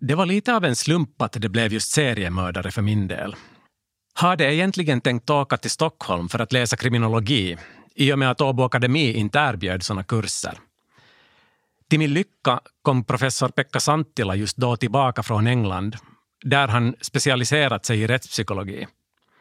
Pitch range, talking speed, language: 110-145 Hz, 165 wpm, Swedish